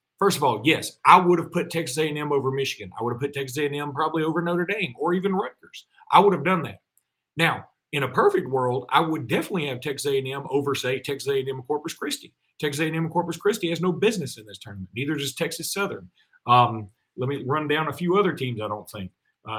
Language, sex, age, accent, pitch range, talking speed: English, male, 40-59, American, 130-175 Hz, 225 wpm